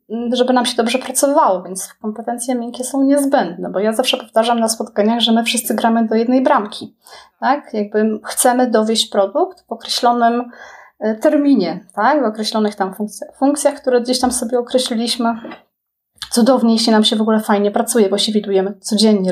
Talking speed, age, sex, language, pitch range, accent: 170 wpm, 20-39, female, Polish, 205-235 Hz, native